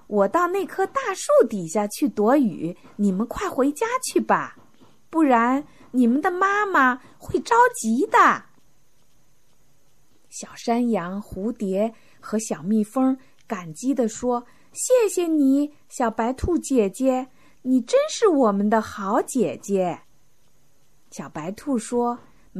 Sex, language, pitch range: female, Chinese, 195-285 Hz